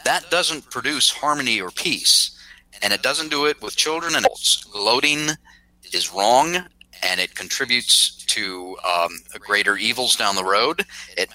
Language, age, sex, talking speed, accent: English, 40-59, male, 155 wpm, American